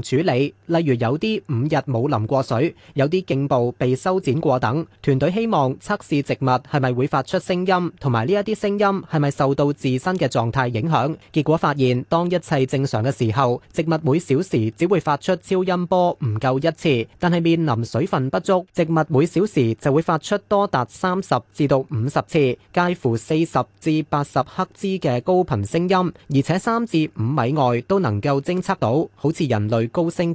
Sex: male